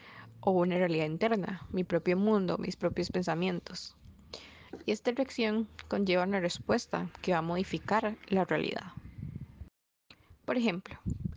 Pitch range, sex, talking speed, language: 175-220 Hz, female, 125 wpm, Spanish